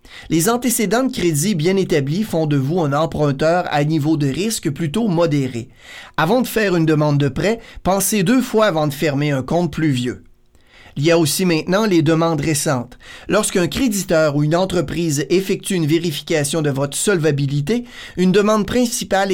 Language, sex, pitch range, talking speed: French, male, 150-205 Hz, 175 wpm